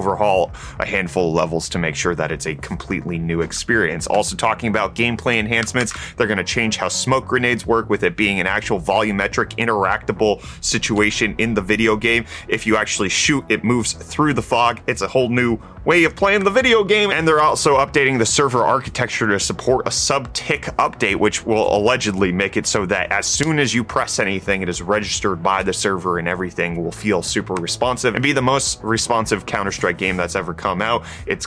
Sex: male